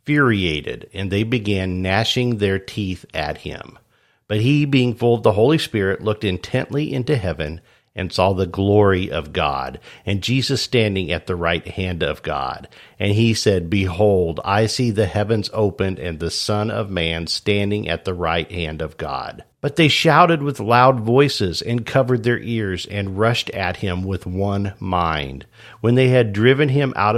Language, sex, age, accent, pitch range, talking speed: English, male, 50-69, American, 95-120 Hz, 175 wpm